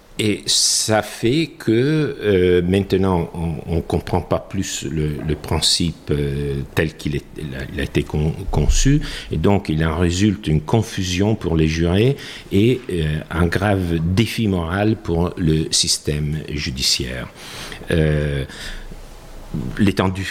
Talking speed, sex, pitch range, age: 135 wpm, male, 75-100 Hz, 50-69